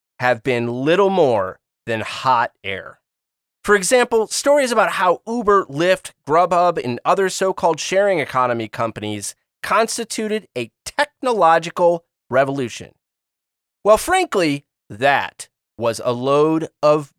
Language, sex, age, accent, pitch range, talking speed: English, male, 30-49, American, 125-195 Hz, 115 wpm